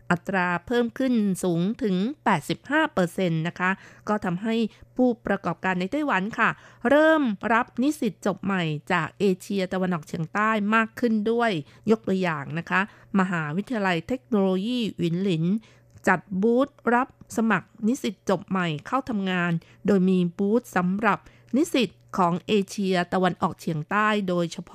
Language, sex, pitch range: Thai, female, 175-220 Hz